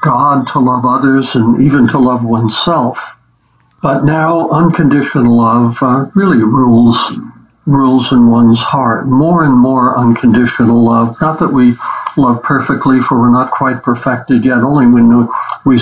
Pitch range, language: 120-140 Hz, English